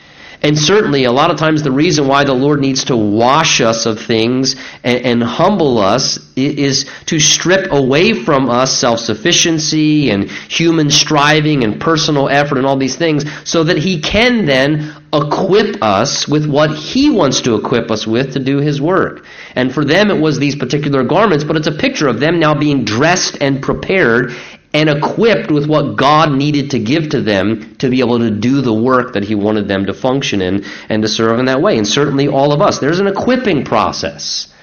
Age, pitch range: 40-59, 125-165 Hz